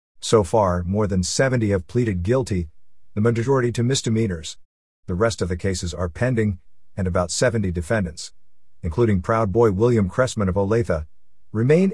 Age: 50-69